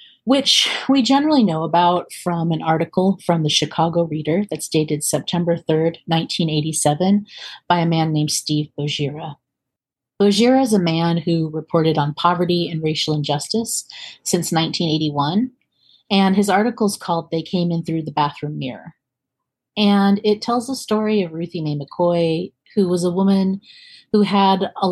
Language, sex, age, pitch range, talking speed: English, female, 30-49, 150-190 Hz, 150 wpm